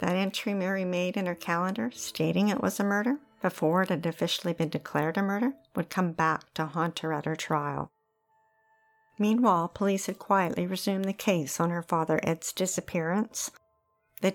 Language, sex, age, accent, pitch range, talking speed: English, female, 50-69, American, 170-210 Hz, 175 wpm